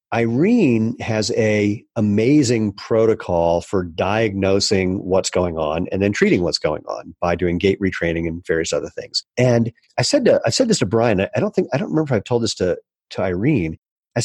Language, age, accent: English, 40-59, American